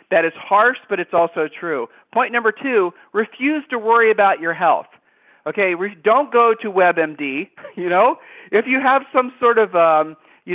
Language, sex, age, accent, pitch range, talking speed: English, male, 40-59, American, 165-220 Hz, 175 wpm